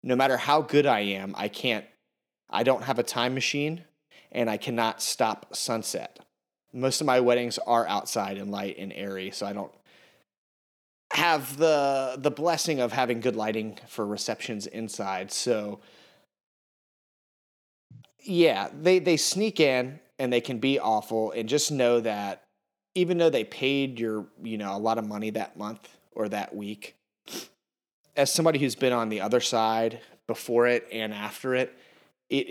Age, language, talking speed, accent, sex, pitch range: 30-49, English, 160 wpm, American, male, 110-140 Hz